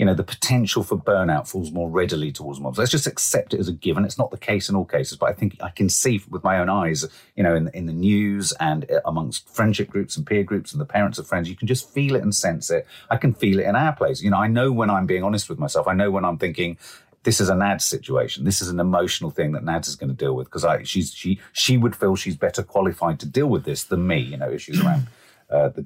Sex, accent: male, British